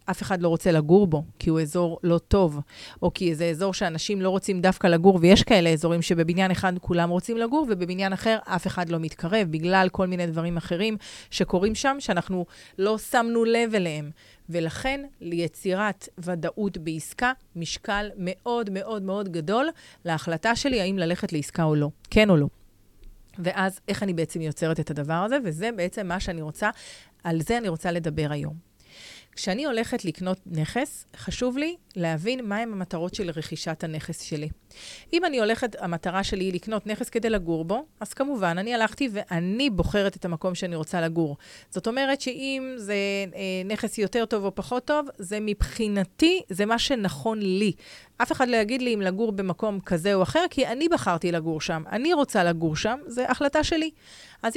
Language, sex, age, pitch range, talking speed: Hebrew, female, 30-49, 170-230 Hz, 175 wpm